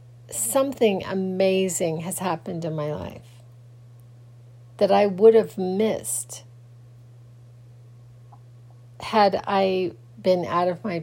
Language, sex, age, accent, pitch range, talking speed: English, female, 40-59, American, 120-180 Hz, 100 wpm